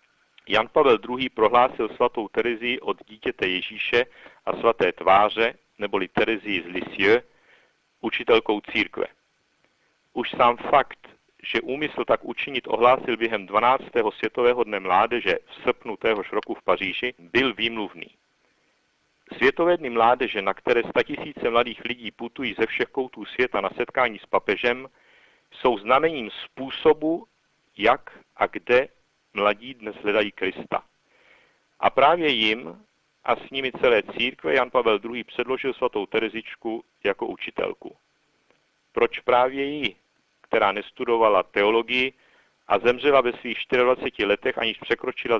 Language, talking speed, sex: Czech, 130 wpm, male